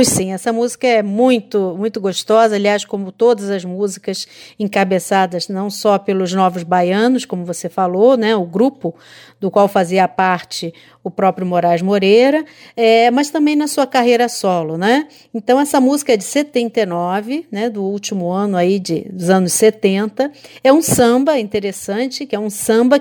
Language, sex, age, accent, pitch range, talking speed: Portuguese, female, 50-69, Brazilian, 195-255 Hz, 165 wpm